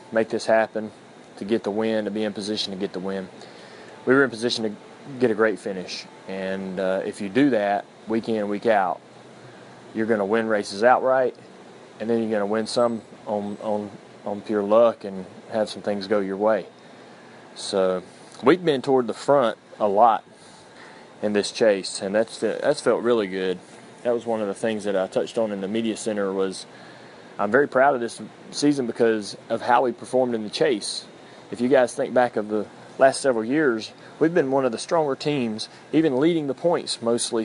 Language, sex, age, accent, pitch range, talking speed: English, male, 20-39, American, 100-120 Hz, 200 wpm